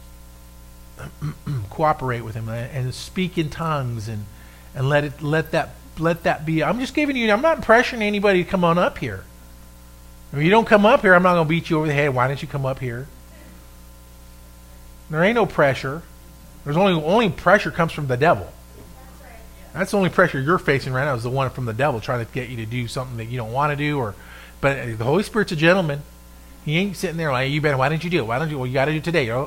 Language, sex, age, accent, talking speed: English, male, 40-59, American, 235 wpm